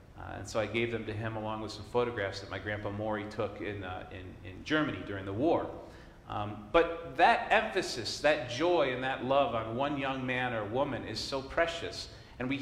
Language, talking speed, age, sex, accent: English, 215 wpm, 40-59, male, American